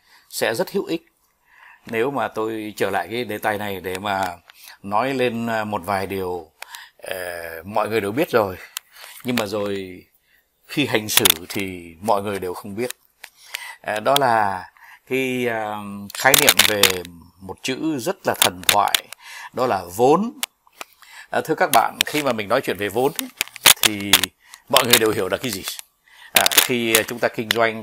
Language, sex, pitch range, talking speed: Vietnamese, male, 105-140 Hz, 160 wpm